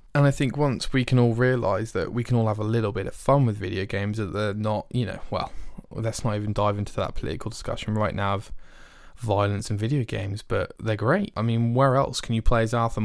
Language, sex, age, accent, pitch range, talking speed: English, male, 20-39, British, 105-125 Hz, 250 wpm